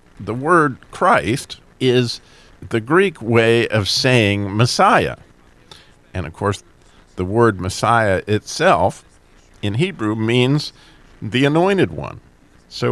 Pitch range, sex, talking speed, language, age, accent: 95-120 Hz, male, 110 wpm, English, 50-69, American